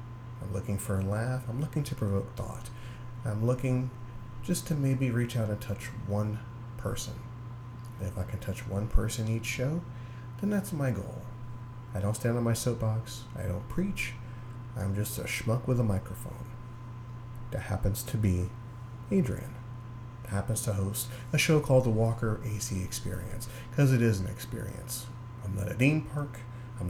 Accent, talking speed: American, 165 wpm